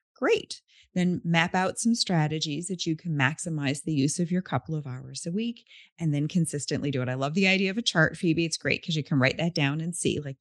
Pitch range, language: 150-225 Hz, English